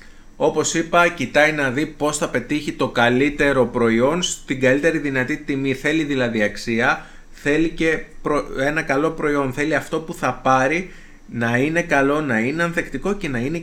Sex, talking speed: male, 165 wpm